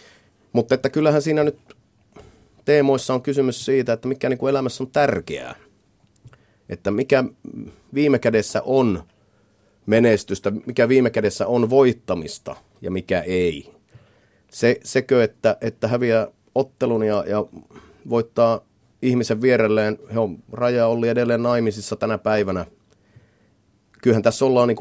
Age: 30-49